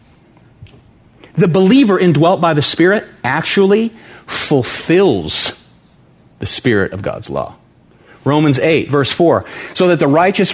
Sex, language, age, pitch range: male, English, 40-59, 140-180 Hz